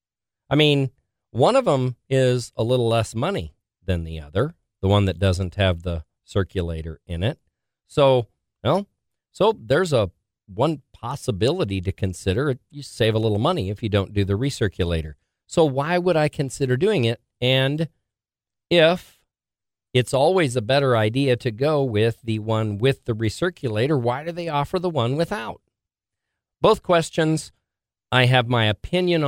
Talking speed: 160 wpm